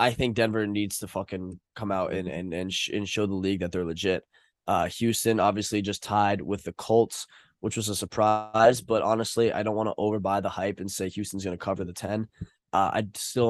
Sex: male